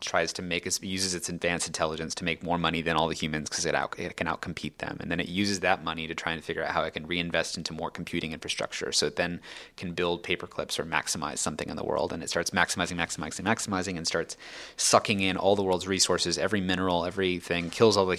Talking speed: 240 wpm